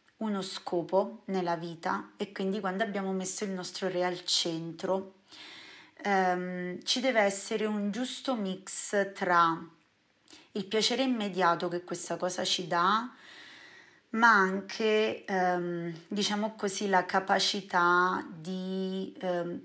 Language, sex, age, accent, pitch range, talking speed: Italian, female, 30-49, native, 180-210 Hz, 120 wpm